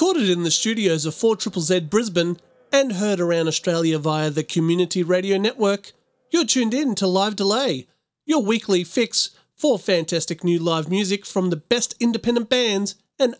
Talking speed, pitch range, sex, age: 160 wpm, 165-230 Hz, male, 30-49